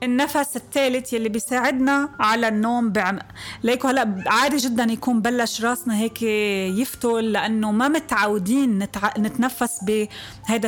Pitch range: 210-270 Hz